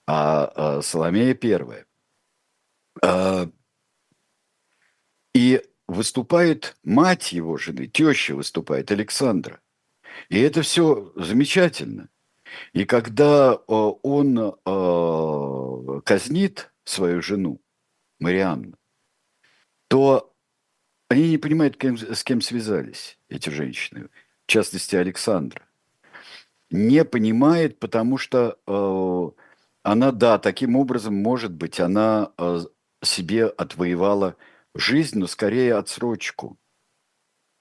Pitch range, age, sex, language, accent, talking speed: 95-135 Hz, 50-69, male, Russian, native, 85 wpm